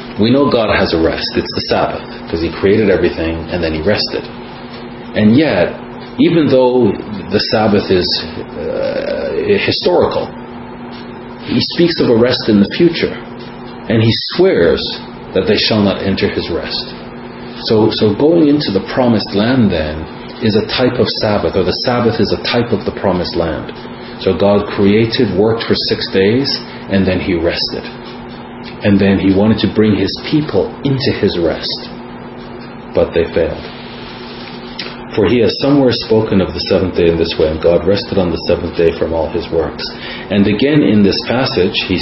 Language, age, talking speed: English, 40-59, 175 wpm